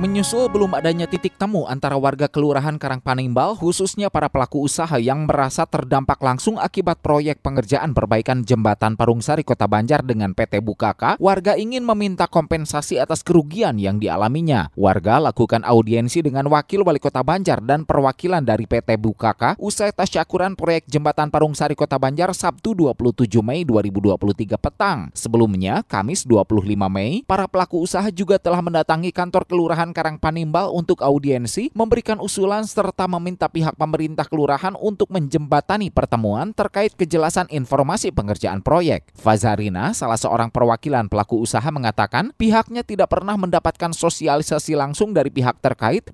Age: 20-39